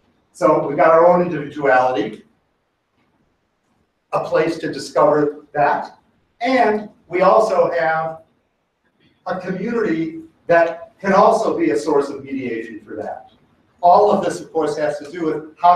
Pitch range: 145-220 Hz